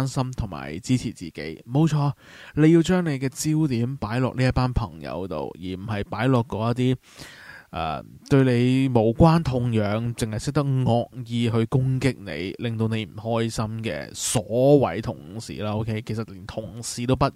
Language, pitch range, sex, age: Chinese, 110-140 Hz, male, 20-39